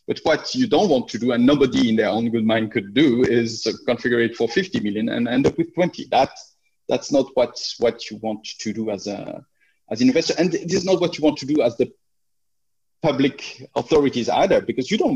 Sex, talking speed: male, 235 wpm